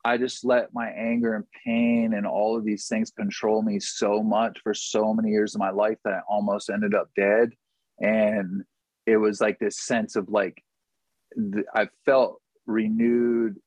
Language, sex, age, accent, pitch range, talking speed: English, male, 30-49, American, 100-115 Hz, 175 wpm